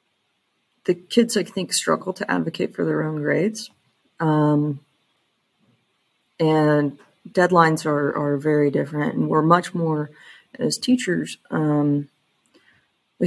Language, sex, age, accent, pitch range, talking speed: English, female, 30-49, American, 150-175 Hz, 120 wpm